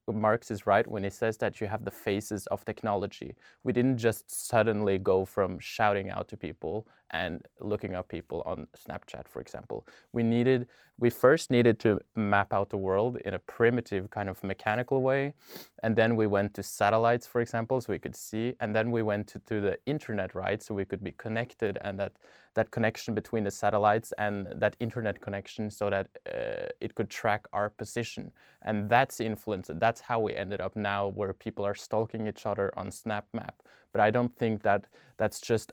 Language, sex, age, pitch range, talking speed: English, male, 20-39, 100-115 Hz, 200 wpm